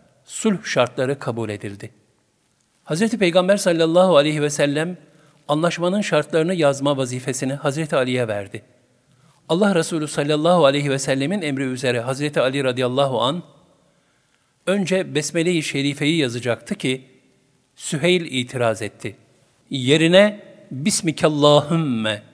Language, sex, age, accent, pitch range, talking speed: Turkish, male, 50-69, native, 125-165 Hz, 105 wpm